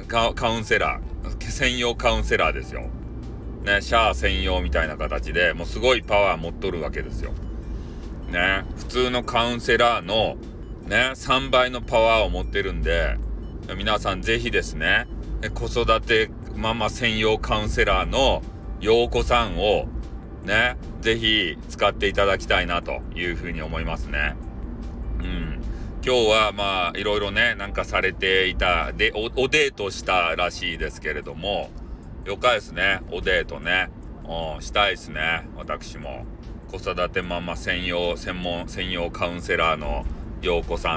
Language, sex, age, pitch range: Japanese, male, 40-59, 80-110 Hz